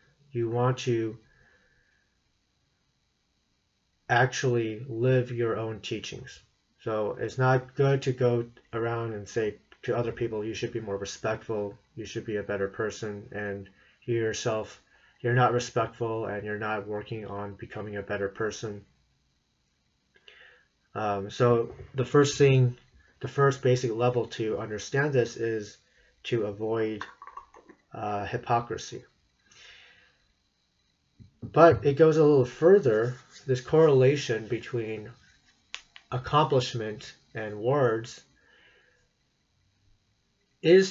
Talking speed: 110 wpm